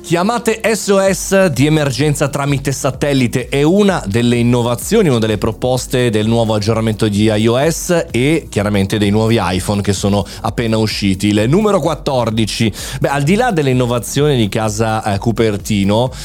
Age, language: 30-49, Italian